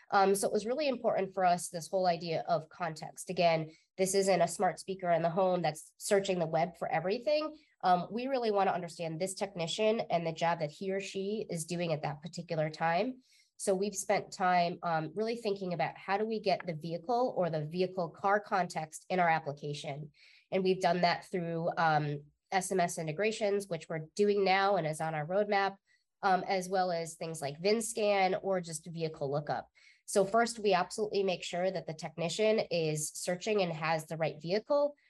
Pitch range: 165-195 Hz